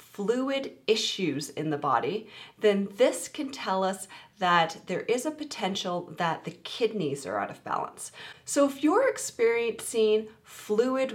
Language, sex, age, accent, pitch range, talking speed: English, female, 30-49, American, 160-220 Hz, 145 wpm